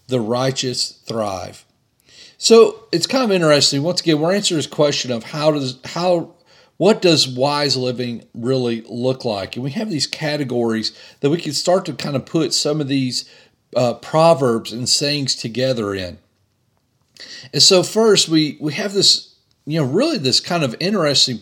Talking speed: 170 wpm